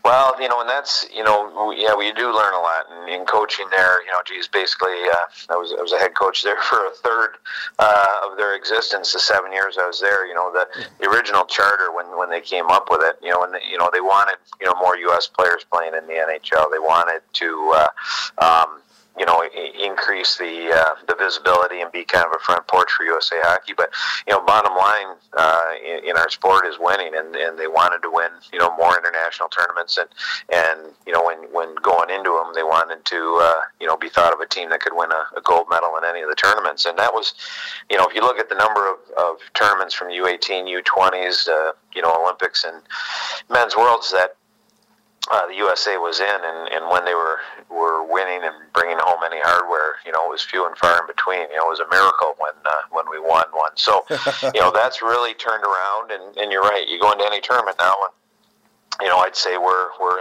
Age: 40-59